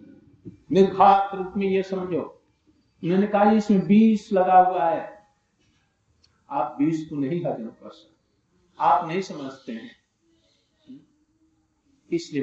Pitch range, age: 140-205 Hz, 60-79